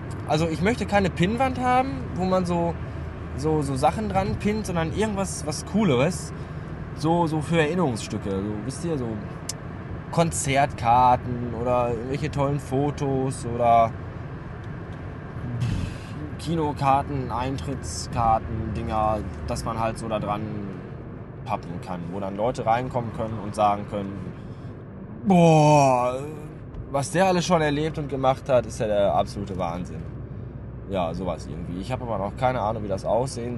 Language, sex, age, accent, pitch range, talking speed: German, male, 20-39, German, 100-140 Hz, 135 wpm